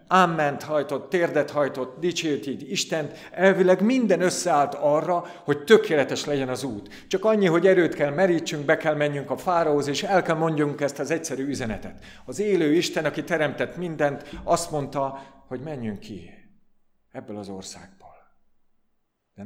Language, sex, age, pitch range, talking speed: Hungarian, male, 50-69, 140-180 Hz, 155 wpm